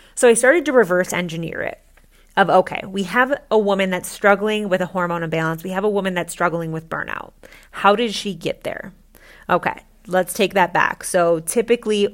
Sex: female